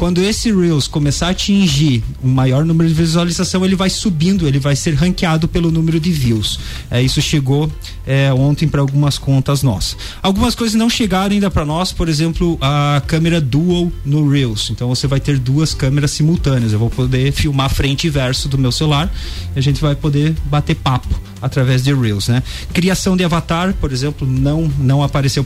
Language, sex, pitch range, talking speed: Portuguese, male, 130-170 Hz, 195 wpm